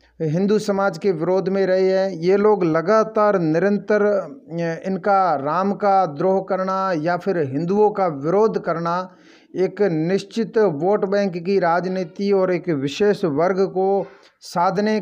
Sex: male